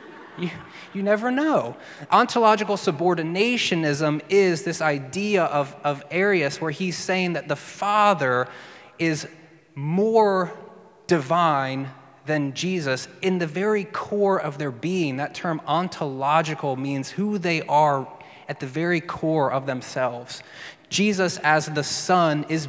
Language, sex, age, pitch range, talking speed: English, male, 20-39, 140-175 Hz, 125 wpm